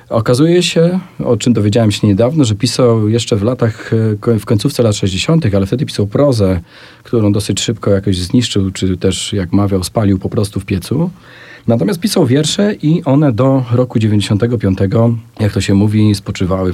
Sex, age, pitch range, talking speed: male, 40-59, 105-130 Hz, 170 wpm